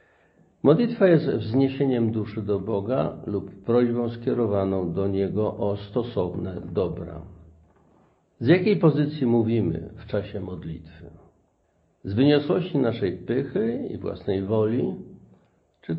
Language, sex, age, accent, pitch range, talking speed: Polish, male, 50-69, native, 100-125 Hz, 110 wpm